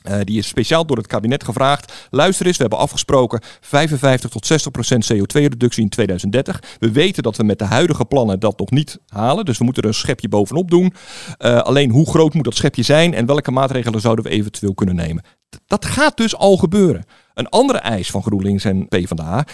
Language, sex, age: Dutch, male, 50-69